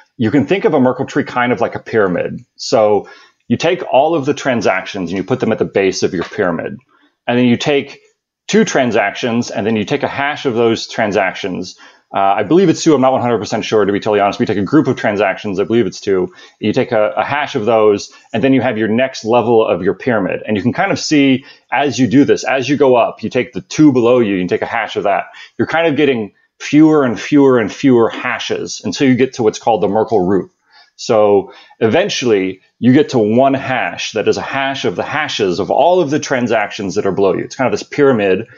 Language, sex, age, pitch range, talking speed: English, male, 30-49, 110-140 Hz, 245 wpm